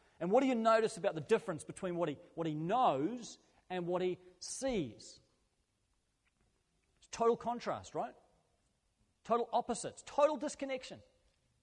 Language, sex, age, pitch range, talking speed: English, male, 40-59, 140-180 Hz, 135 wpm